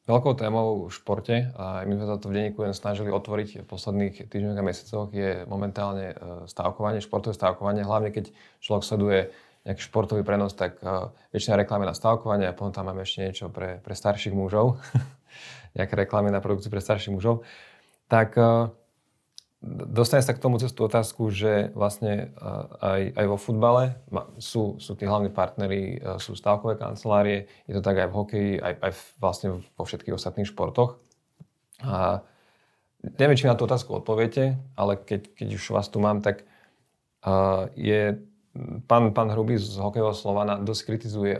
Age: 20-39